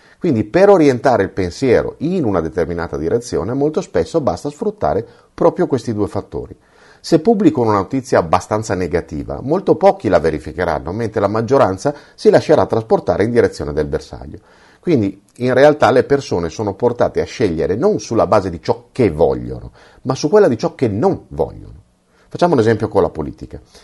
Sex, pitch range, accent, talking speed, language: male, 95-150 Hz, native, 170 wpm, Italian